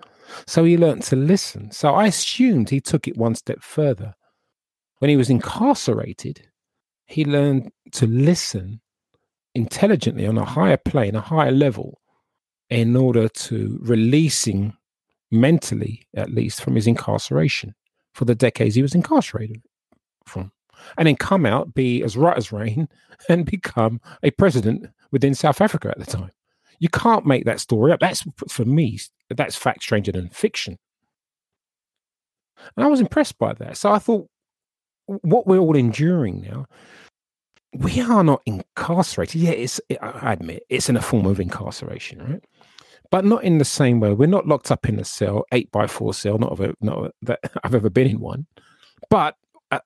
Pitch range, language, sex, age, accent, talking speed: 110-160 Hz, English, male, 40-59, British, 170 wpm